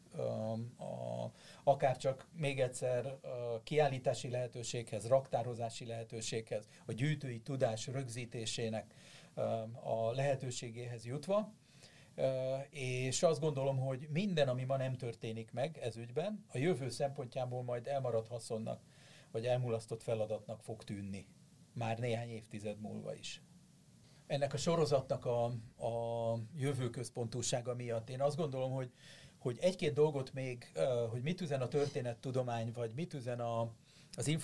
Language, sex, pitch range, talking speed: Hungarian, male, 115-140 Hz, 120 wpm